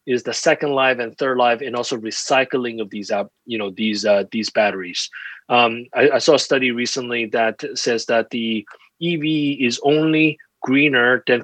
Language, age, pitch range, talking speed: English, 30-49, 110-135 Hz, 185 wpm